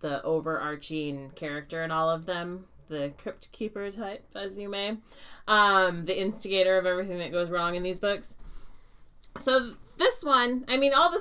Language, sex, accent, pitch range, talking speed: English, female, American, 140-185 Hz, 175 wpm